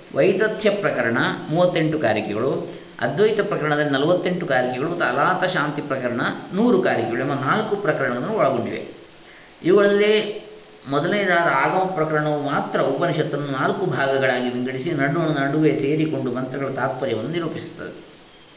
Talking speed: 105 wpm